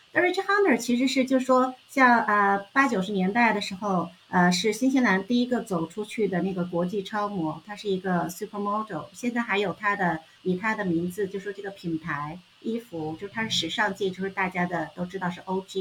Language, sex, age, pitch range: Chinese, female, 50-69, 190-275 Hz